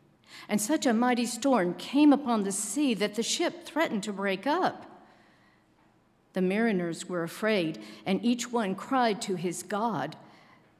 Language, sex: English, female